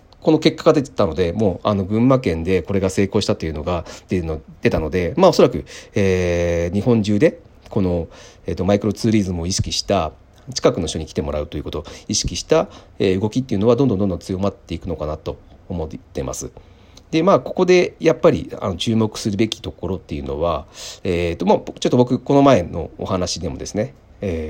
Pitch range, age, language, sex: 85-130 Hz, 40-59, Japanese, male